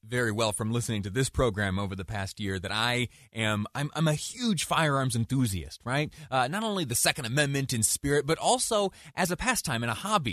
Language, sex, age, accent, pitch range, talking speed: English, male, 30-49, American, 100-135 Hz, 215 wpm